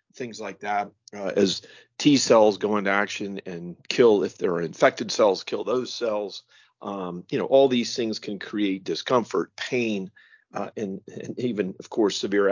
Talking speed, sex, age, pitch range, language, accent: 175 wpm, male, 40-59, 100-115 Hz, English, American